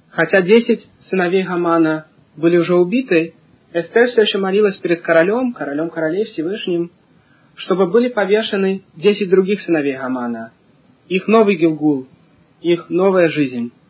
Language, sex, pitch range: Russian, male, 150-195 Hz